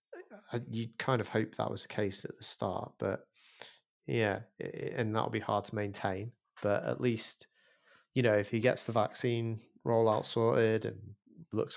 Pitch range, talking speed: 100-115 Hz, 180 wpm